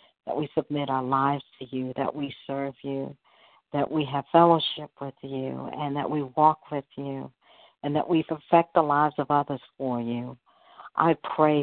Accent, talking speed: American, 180 wpm